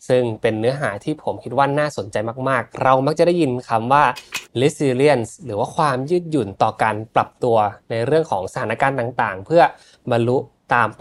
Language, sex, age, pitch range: Thai, male, 20-39, 115-150 Hz